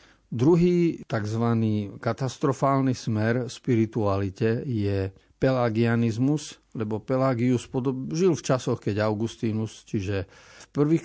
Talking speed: 100 wpm